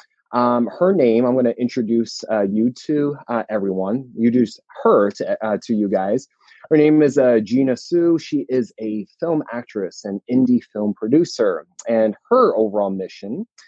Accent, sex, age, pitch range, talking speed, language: American, male, 20-39, 110-135 Hz, 155 wpm, English